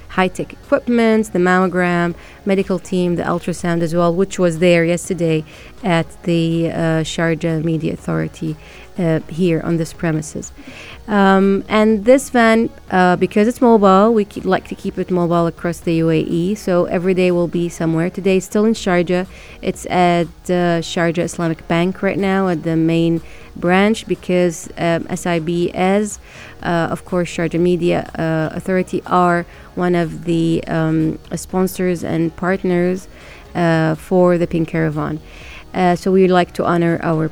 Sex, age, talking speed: female, 30-49, 160 wpm